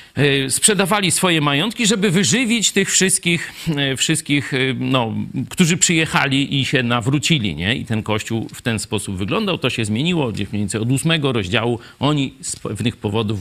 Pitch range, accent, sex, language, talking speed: 105-145 Hz, native, male, Polish, 150 wpm